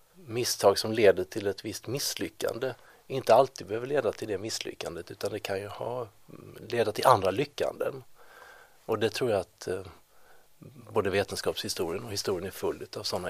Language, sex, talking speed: Swedish, male, 160 wpm